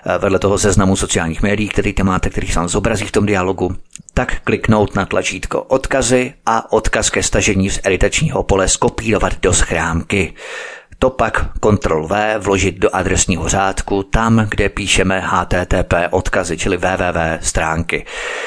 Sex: male